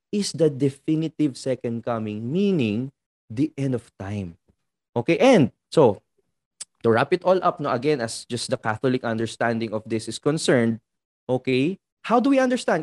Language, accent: English, Filipino